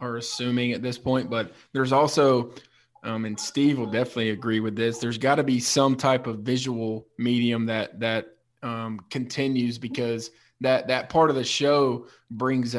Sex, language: male, English